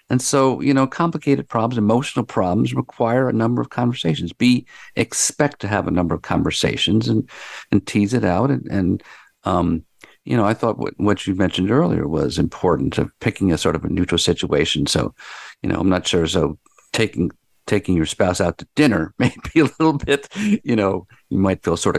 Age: 50-69